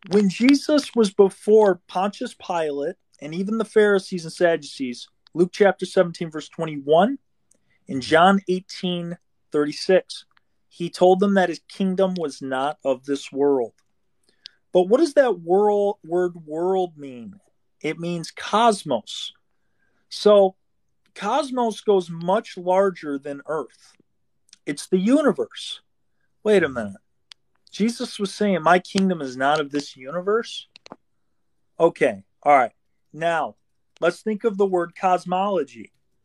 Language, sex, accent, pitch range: English, male, American, 170-205 Hz